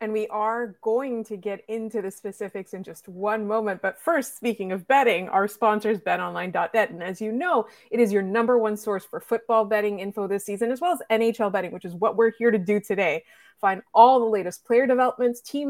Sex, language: female, English